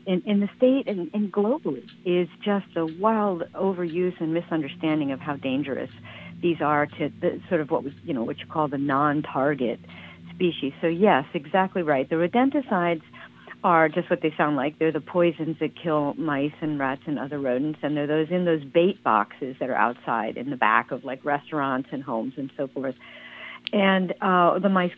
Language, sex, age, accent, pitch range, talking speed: English, female, 50-69, American, 150-195 Hz, 195 wpm